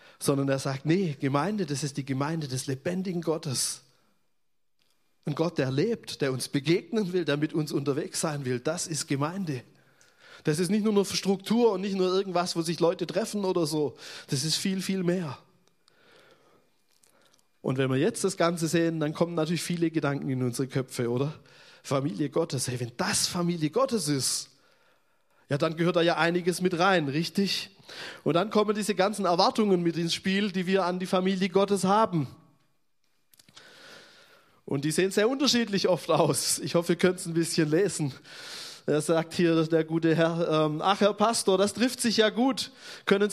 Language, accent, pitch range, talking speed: German, German, 155-200 Hz, 180 wpm